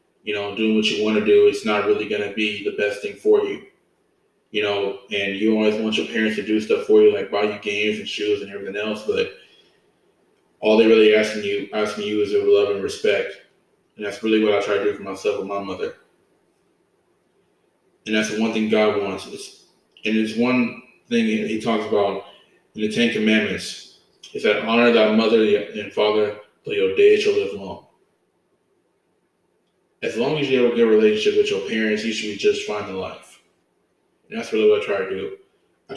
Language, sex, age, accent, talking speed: English, male, 20-39, American, 210 wpm